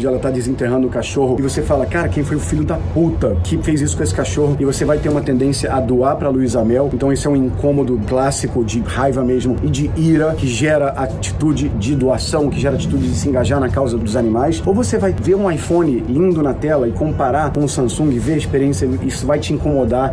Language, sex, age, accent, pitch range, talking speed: Portuguese, male, 40-59, Brazilian, 130-155 Hz, 240 wpm